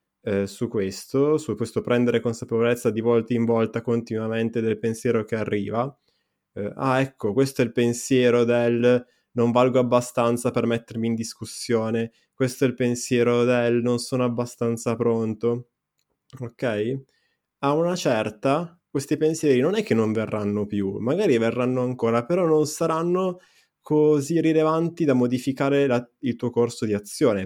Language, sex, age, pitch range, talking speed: Italian, male, 20-39, 110-125 Hz, 145 wpm